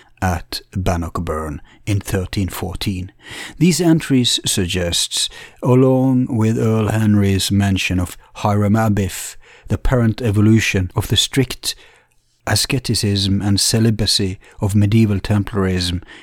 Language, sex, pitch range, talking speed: English, male, 95-115 Hz, 100 wpm